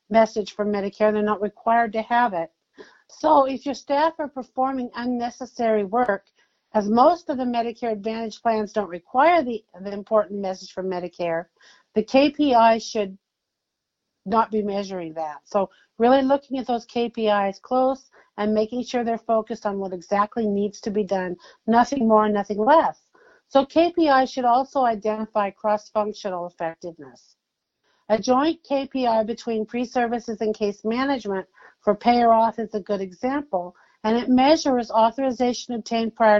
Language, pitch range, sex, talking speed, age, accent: English, 205-245 Hz, female, 150 wpm, 50-69, American